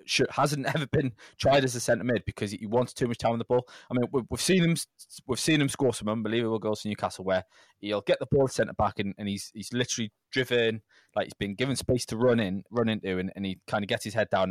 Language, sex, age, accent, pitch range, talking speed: English, male, 20-39, British, 105-130 Hz, 260 wpm